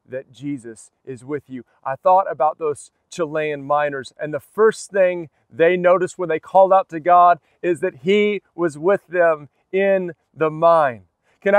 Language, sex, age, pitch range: English, male, 40-59, 175-215 Hz